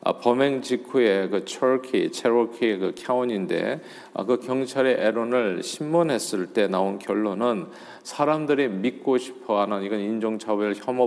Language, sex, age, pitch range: Korean, male, 40-59, 105-130 Hz